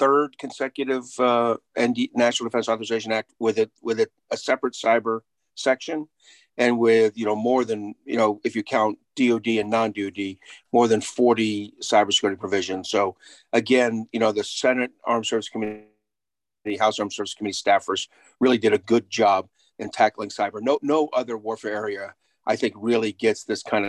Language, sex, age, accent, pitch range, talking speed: English, male, 50-69, American, 105-120 Hz, 170 wpm